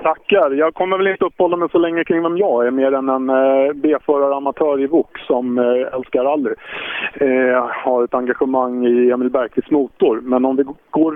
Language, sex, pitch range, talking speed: Swedish, male, 135-190 Hz, 210 wpm